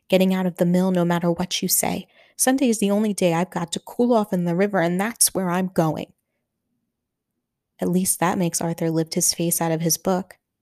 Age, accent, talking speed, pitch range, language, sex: 20-39, American, 225 wpm, 170-210 Hz, English, female